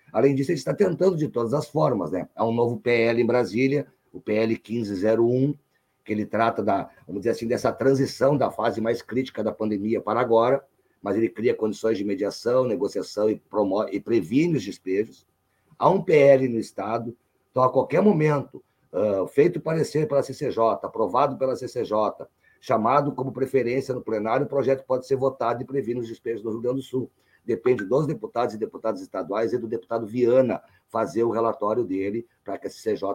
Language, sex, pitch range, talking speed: Portuguese, male, 115-135 Hz, 185 wpm